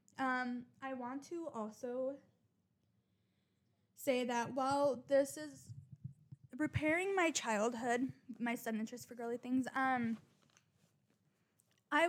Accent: American